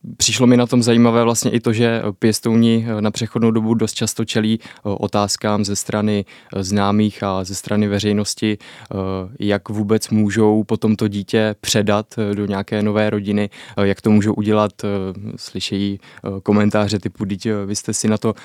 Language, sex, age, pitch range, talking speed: Czech, male, 20-39, 105-110 Hz, 155 wpm